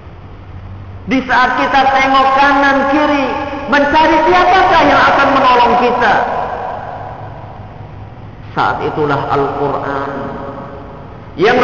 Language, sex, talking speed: Malay, male, 80 wpm